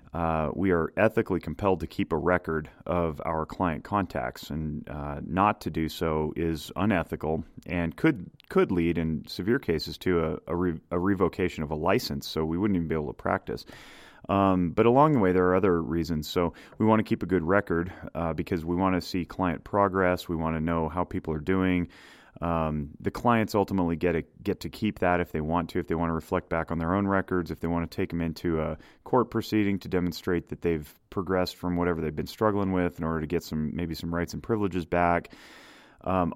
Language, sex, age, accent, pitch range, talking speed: English, male, 30-49, American, 80-95 Hz, 220 wpm